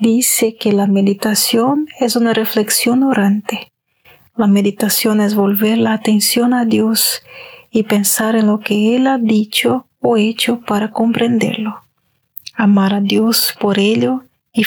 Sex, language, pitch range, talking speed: female, Spanish, 210-240 Hz, 140 wpm